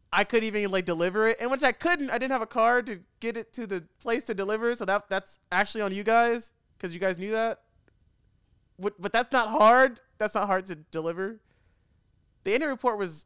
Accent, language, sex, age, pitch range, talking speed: American, English, male, 20-39, 155-225 Hz, 220 wpm